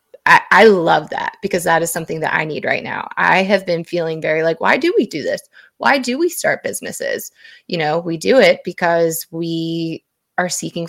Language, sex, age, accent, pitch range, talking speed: English, female, 20-39, American, 165-210 Hz, 210 wpm